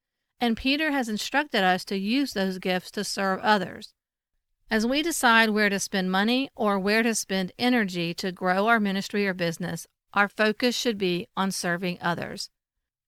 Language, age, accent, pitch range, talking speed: English, 50-69, American, 190-245 Hz, 170 wpm